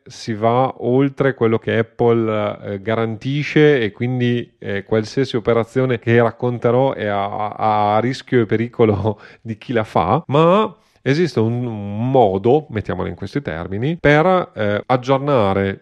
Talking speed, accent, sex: 135 wpm, native, male